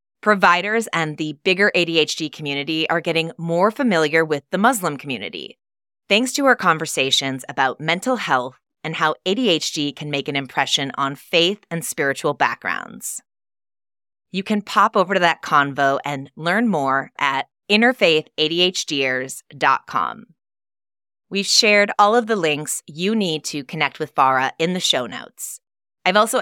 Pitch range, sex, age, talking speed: 145-200 Hz, female, 30-49, 145 wpm